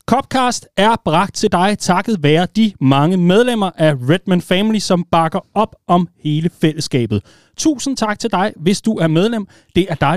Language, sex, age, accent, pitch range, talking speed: Danish, male, 30-49, native, 130-180 Hz, 175 wpm